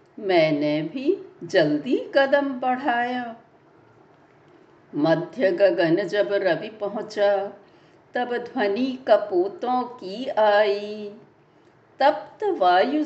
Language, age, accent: Hindi, 60-79, native